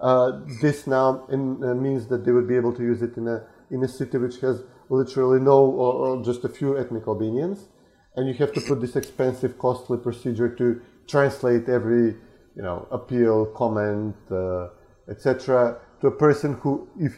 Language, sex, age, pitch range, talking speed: English, male, 30-49, 120-140 Hz, 185 wpm